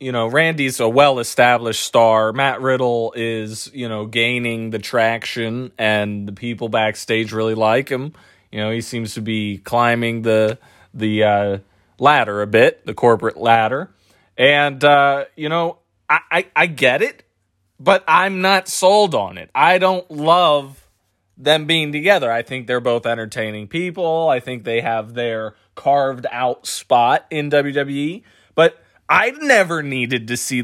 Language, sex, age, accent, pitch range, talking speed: English, male, 30-49, American, 115-185 Hz, 155 wpm